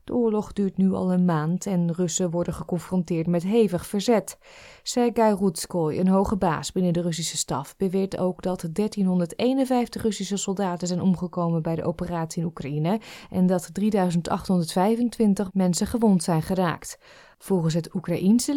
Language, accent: Dutch, Dutch